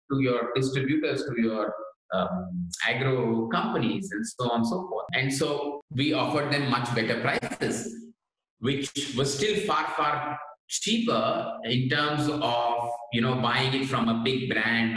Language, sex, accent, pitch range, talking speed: English, male, Indian, 115-150 Hz, 155 wpm